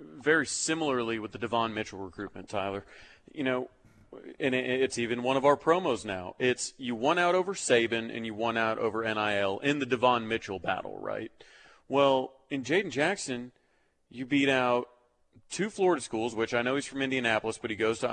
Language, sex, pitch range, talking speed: English, male, 110-140 Hz, 185 wpm